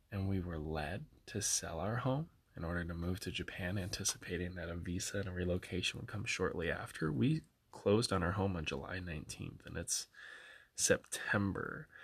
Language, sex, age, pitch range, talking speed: English, male, 20-39, 85-110 Hz, 180 wpm